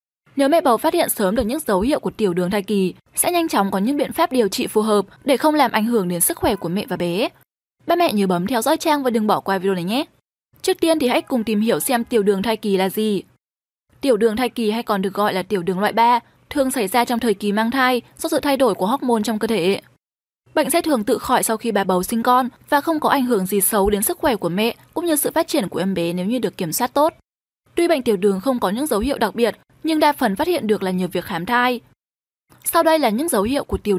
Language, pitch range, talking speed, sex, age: Vietnamese, 200-275 Hz, 290 wpm, female, 10-29